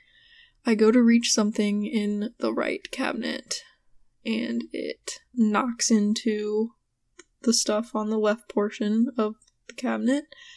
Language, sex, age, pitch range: English, female, 10-29, 210-260 Hz